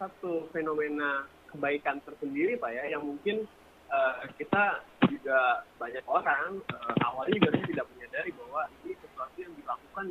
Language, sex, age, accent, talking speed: Indonesian, male, 20-39, native, 135 wpm